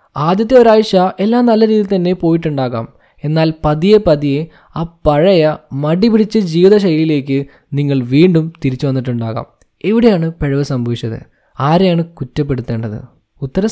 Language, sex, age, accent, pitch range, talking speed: Malayalam, male, 20-39, native, 145-200 Hz, 110 wpm